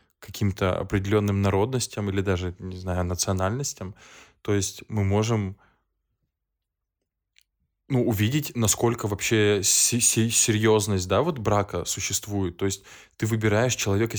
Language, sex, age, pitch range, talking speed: Russian, male, 20-39, 95-110 Hz, 100 wpm